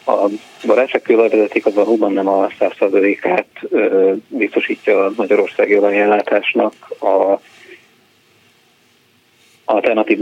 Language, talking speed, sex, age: Hungarian, 75 wpm, male, 30-49